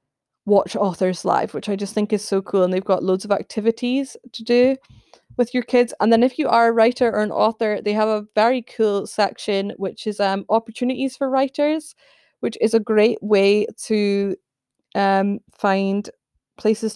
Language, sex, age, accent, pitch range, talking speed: English, female, 20-39, British, 195-235 Hz, 185 wpm